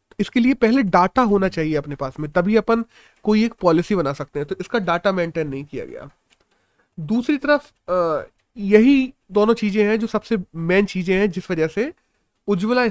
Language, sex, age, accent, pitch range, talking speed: Hindi, male, 30-49, native, 180-230 Hz, 180 wpm